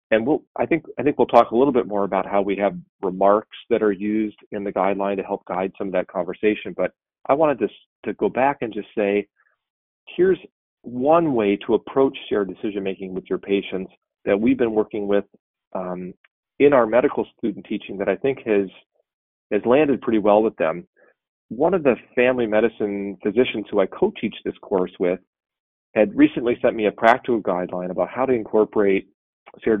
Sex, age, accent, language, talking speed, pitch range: male, 40-59, American, English, 195 wpm, 95-125 Hz